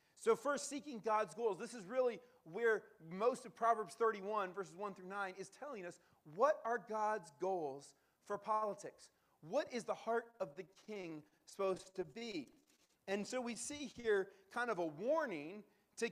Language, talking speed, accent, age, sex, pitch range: English, 170 wpm, American, 40-59, male, 185-230 Hz